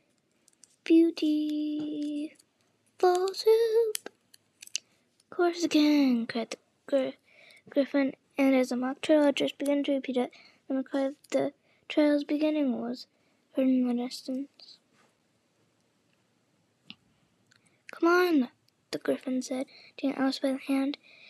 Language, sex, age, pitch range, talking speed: English, female, 20-39, 270-320 Hz, 115 wpm